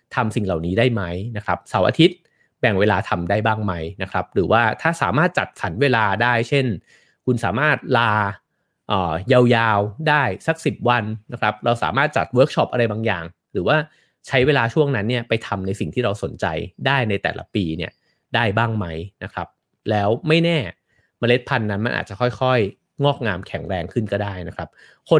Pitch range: 100-130 Hz